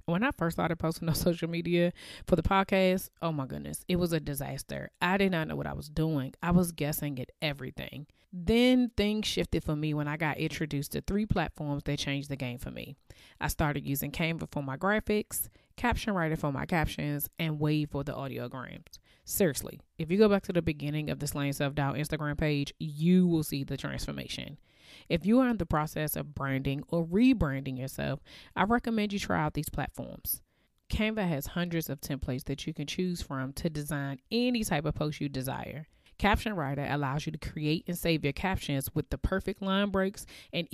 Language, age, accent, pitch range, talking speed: English, 20-39, American, 145-180 Hz, 205 wpm